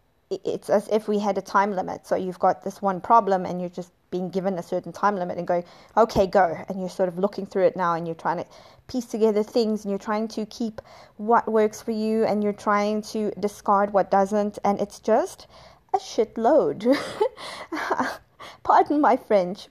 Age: 20-39